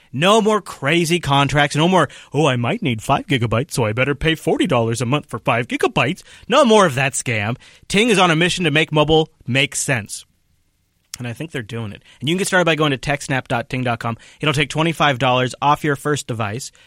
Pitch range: 115-155 Hz